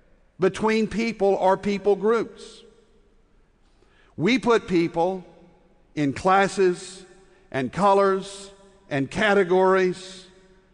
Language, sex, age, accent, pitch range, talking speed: English, male, 60-79, American, 175-200 Hz, 80 wpm